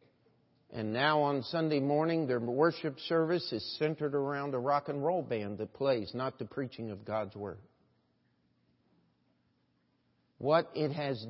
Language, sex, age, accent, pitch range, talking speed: English, male, 50-69, American, 120-170 Hz, 145 wpm